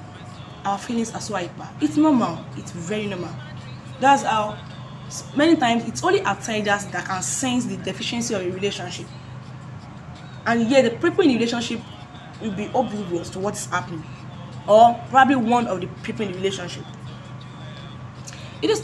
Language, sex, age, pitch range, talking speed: English, female, 10-29, 170-245 Hz, 160 wpm